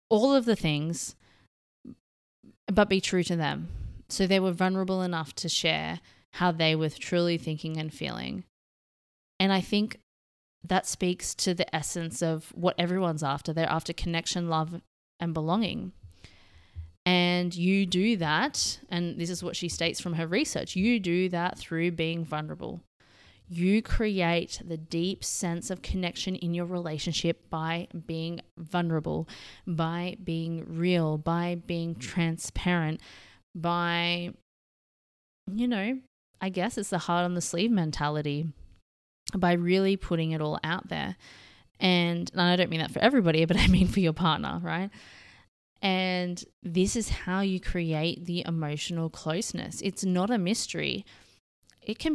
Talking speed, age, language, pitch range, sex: 145 wpm, 20-39, English, 160-185 Hz, female